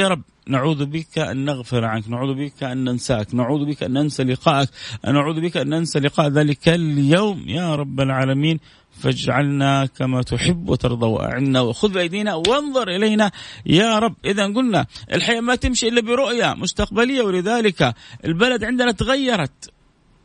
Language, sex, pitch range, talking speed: Arabic, male, 135-210 Hz, 150 wpm